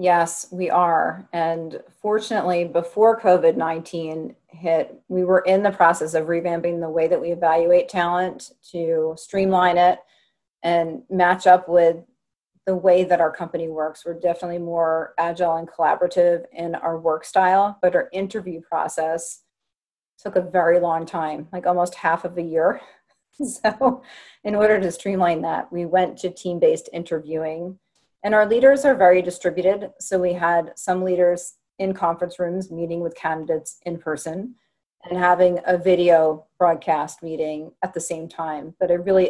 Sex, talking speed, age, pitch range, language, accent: female, 155 wpm, 30-49, 165-185 Hz, English, American